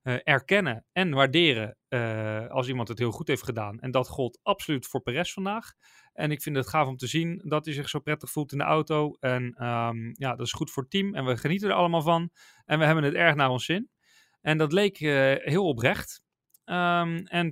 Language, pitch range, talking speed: Dutch, 125-160 Hz, 225 wpm